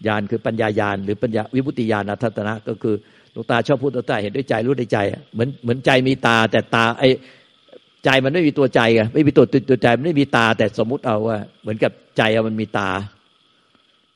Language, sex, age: Thai, male, 60-79